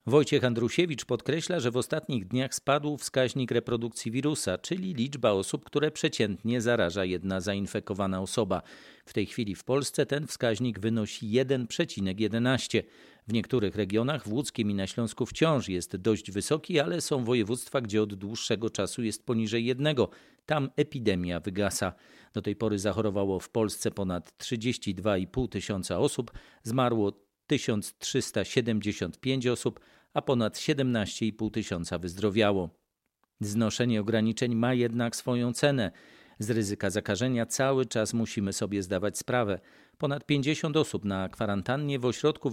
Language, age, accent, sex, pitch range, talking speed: Polish, 40-59, native, male, 105-130 Hz, 135 wpm